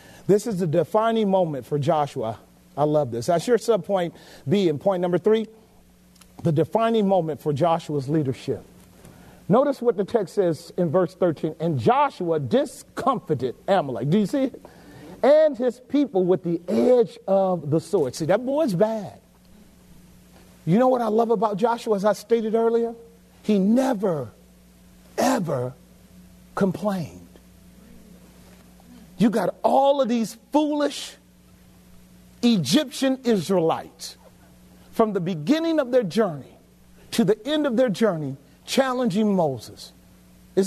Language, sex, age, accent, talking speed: English, male, 40-59, American, 135 wpm